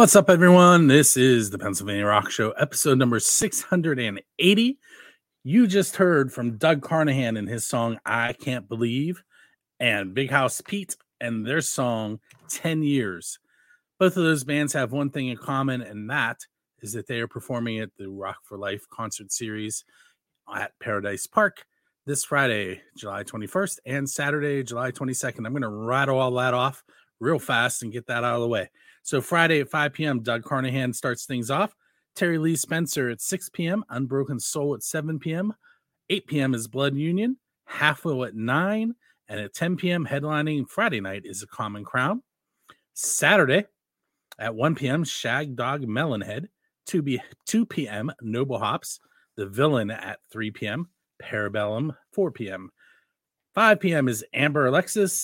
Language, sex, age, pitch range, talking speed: English, male, 40-59, 120-165 Hz, 160 wpm